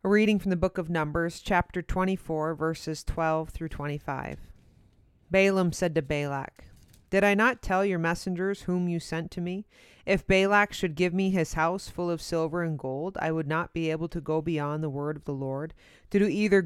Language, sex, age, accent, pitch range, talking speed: English, female, 30-49, American, 155-190 Hz, 200 wpm